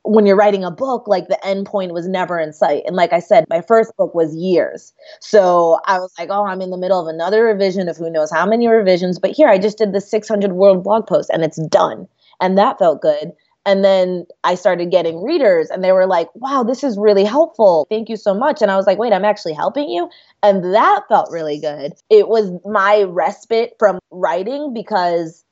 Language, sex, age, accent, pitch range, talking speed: English, female, 20-39, American, 175-220 Hz, 230 wpm